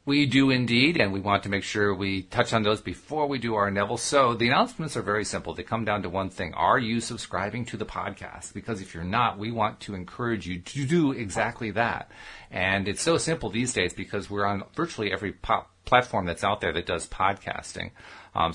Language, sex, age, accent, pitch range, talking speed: English, male, 50-69, American, 90-120 Hz, 220 wpm